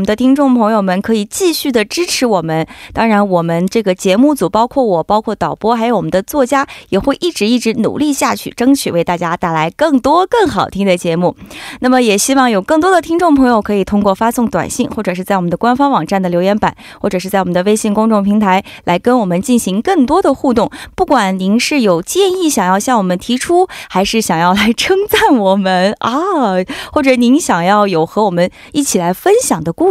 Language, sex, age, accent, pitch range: Korean, female, 20-39, Chinese, 180-270 Hz